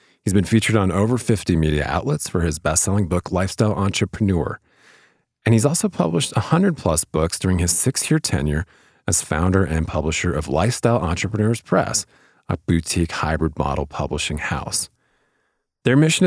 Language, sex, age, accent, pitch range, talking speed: English, male, 40-59, American, 85-115 Hz, 150 wpm